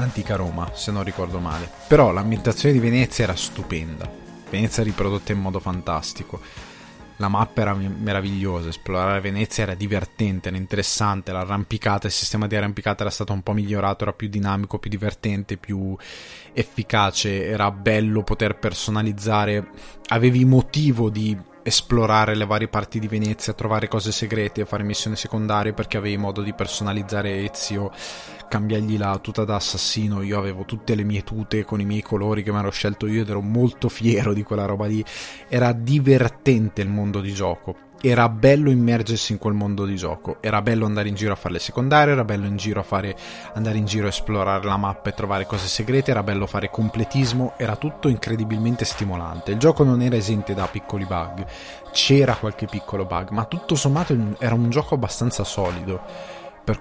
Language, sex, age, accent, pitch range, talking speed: Italian, male, 20-39, native, 100-110 Hz, 170 wpm